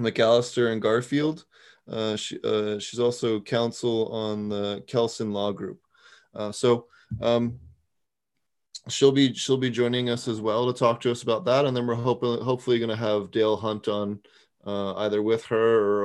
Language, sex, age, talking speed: English, male, 20-39, 170 wpm